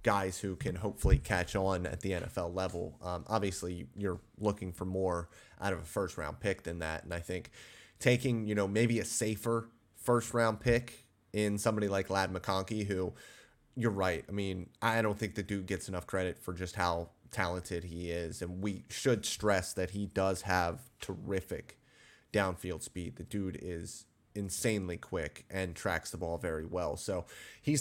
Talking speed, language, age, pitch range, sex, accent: 180 wpm, English, 30-49, 90-105 Hz, male, American